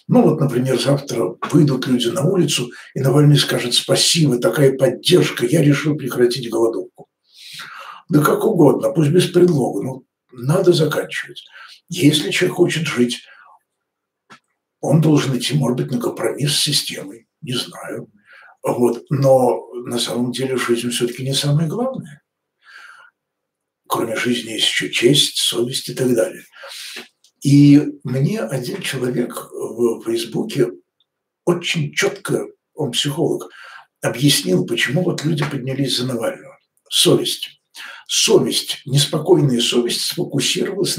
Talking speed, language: 125 wpm, Russian